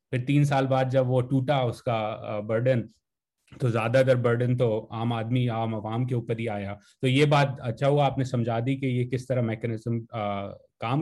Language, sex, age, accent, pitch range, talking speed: English, male, 30-49, Indian, 115-145 Hz, 190 wpm